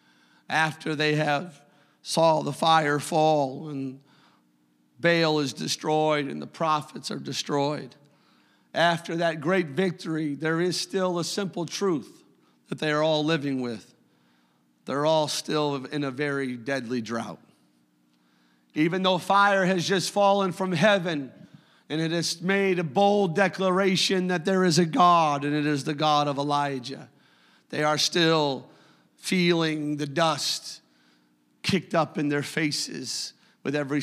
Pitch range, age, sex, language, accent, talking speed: 130-165 Hz, 50-69, male, English, American, 140 wpm